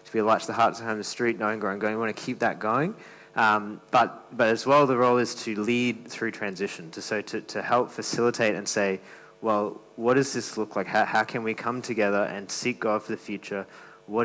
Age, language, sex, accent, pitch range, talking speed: 20-39, English, male, Australian, 100-120 Hz, 255 wpm